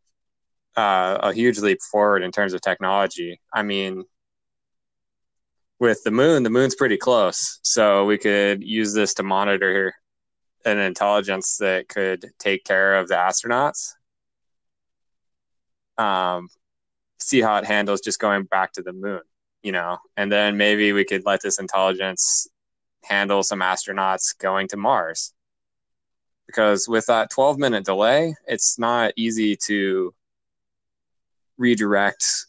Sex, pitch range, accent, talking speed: male, 95-105 Hz, American, 130 wpm